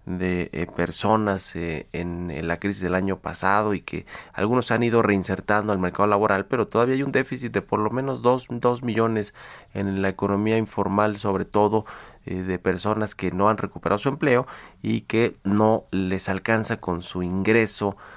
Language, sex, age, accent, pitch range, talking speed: Spanish, male, 30-49, Mexican, 95-110 Hz, 180 wpm